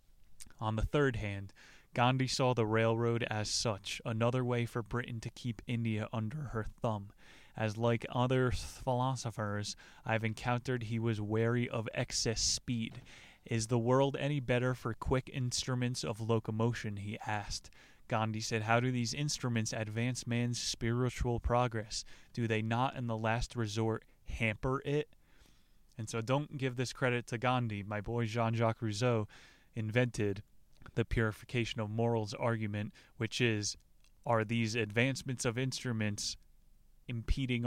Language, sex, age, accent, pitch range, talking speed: English, male, 20-39, American, 110-125 Hz, 140 wpm